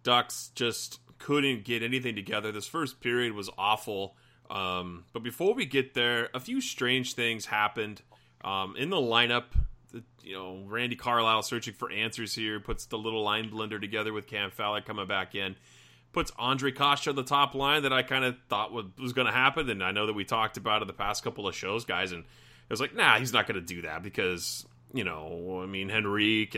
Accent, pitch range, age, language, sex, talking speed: American, 100-125 Hz, 30-49, English, male, 215 wpm